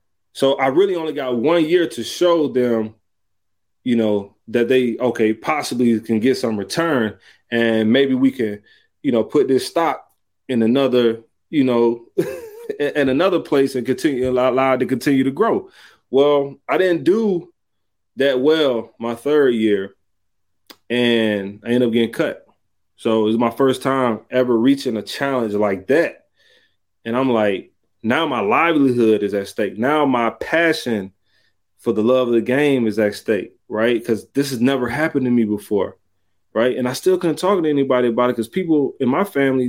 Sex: male